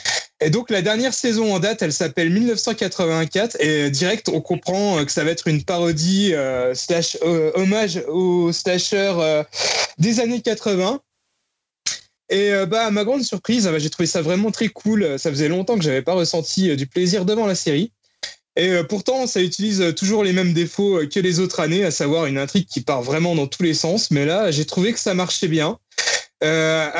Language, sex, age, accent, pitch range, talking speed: French, male, 20-39, French, 160-205 Hz, 200 wpm